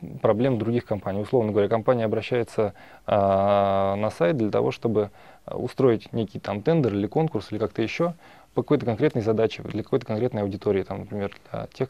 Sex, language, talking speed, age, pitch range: male, Russian, 160 wpm, 20-39, 105-125 Hz